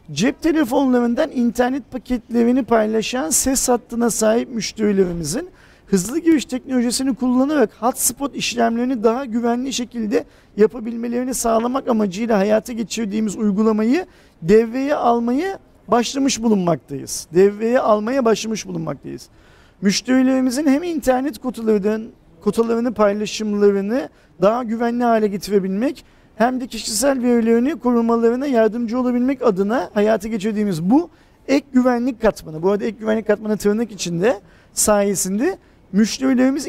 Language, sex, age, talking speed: Turkish, male, 40-59, 105 wpm